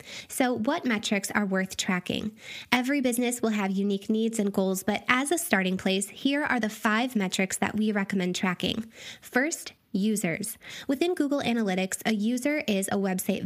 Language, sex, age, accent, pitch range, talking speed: English, female, 10-29, American, 195-240 Hz, 170 wpm